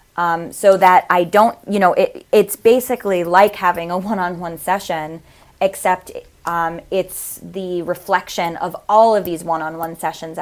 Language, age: English, 20-39